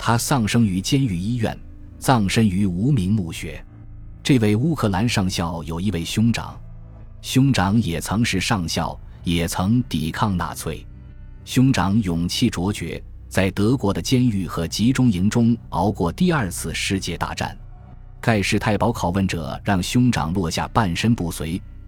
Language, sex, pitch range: Chinese, male, 85-115 Hz